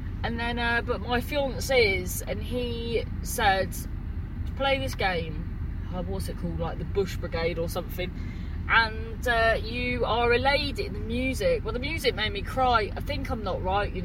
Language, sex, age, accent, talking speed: English, female, 30-49, British, 190 wpm